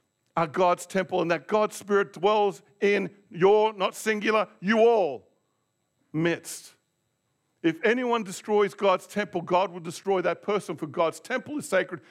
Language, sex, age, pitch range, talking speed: English, male, 50-69, 150-200 Hz, 150 wpm